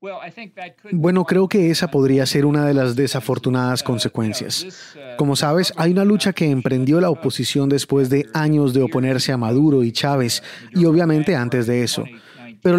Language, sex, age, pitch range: Spanish, male, 30-49, 130-165 Hz